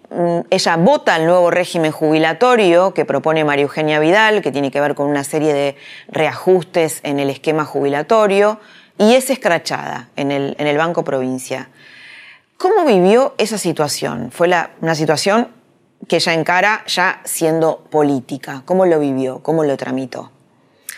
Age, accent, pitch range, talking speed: 20-39, Argentinian, 140-175 Hz, 145 wpm